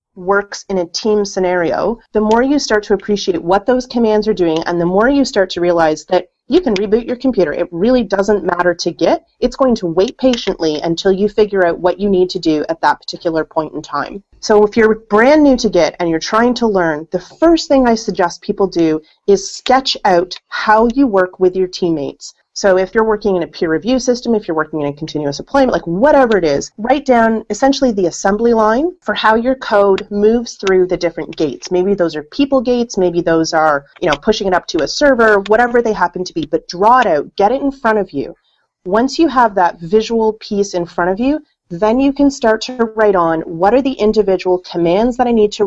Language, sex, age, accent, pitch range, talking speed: English, female, 30-49, American, 175-235 Hz, 230 wpm